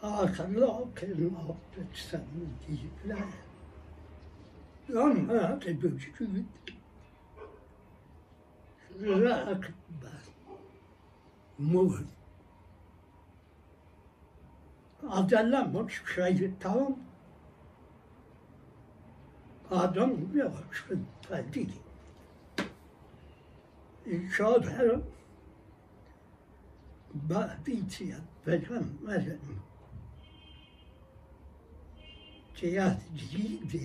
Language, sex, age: Persian, male, 60-79